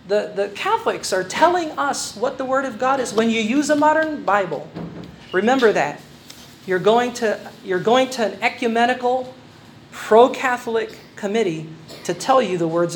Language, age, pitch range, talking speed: Filipino, 40-59, 185-250 Hz, 160 wpm